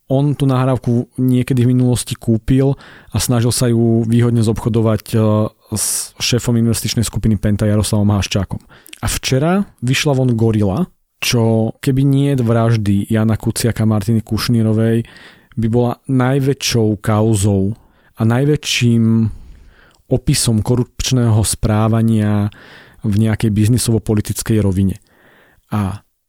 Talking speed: 110 wpm